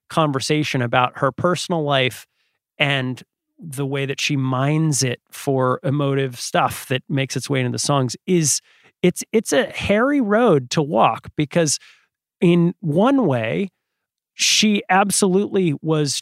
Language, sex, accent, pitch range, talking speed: English, male, American, 135-185 Hz, 135 wpm